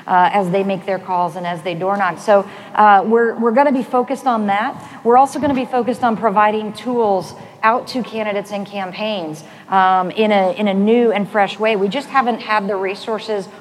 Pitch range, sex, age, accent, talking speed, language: 185-225 Hz, female, 40-59, American, 220 wpm, English